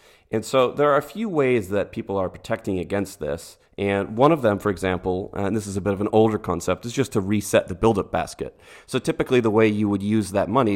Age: 30-49